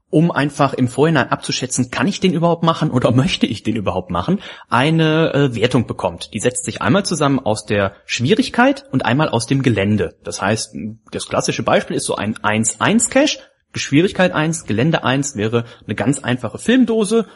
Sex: male